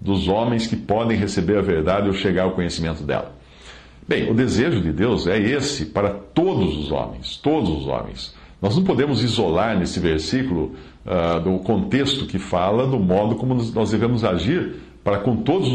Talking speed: 175 wpm